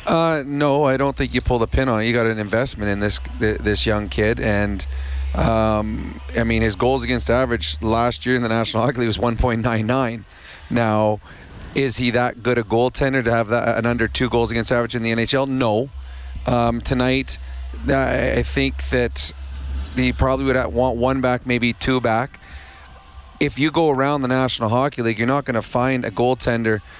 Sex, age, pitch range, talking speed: male, 30-49, 110-130 Hz, 190 wpm